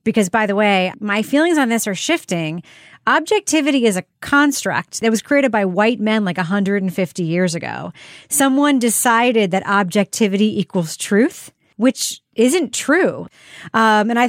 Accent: American